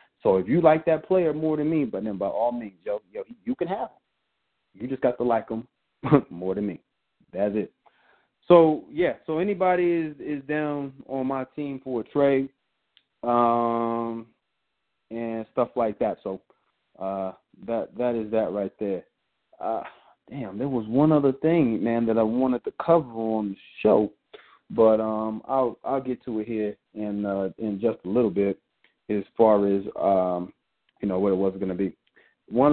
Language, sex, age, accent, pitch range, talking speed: English, male, 30-49, American, 110-150 Hz, 185 wpm